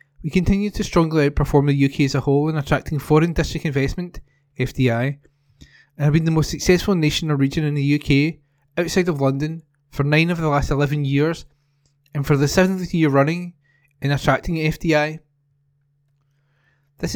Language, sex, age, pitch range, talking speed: English, male, 20-39, 140-165 Hz, 170 wpm